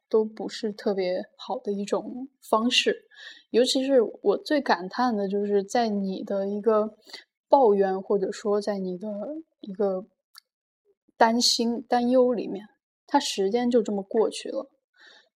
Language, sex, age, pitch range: Chinese, female, 10-29, 200-260 Hz